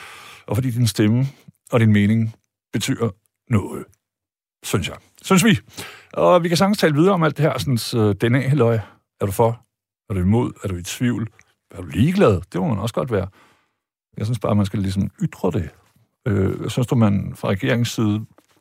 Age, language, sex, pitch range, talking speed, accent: 60-79, Danish, male, 100-125 Hz, 195 wpm, native